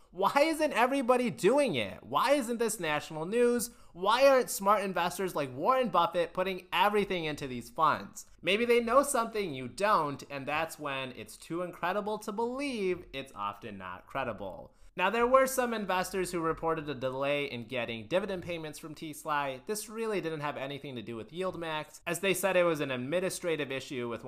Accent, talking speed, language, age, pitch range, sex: American, 180 wpm, English, 30-49, 125-195 Hz, male